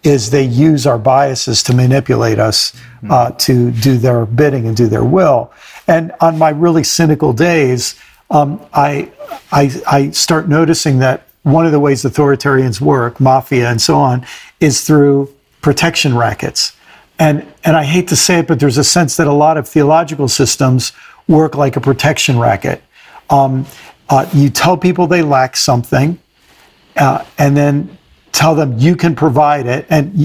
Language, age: English, 50-69